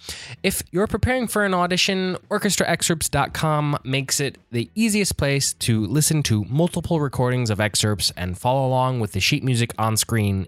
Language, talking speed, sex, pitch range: English, 160 wpm, male, 110-170 Hz